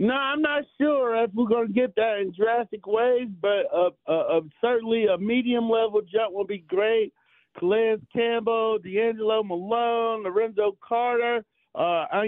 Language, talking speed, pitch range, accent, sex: English, 145 wpm, 200-235 Hz, American, male